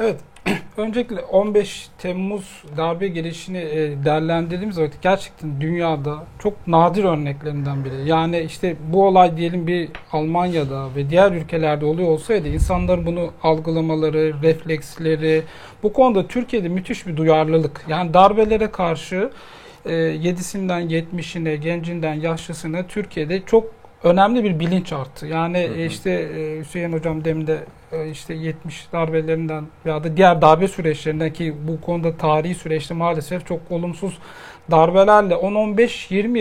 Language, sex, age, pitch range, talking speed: Turkish, male, 40-59, 160-190 Hz, 120 wpm